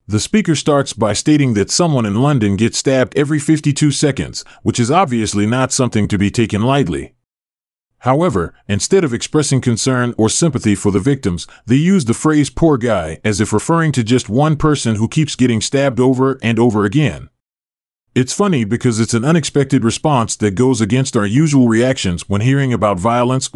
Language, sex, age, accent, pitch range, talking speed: English, male, 30-49, American, 105-140 Hz, 180 wpm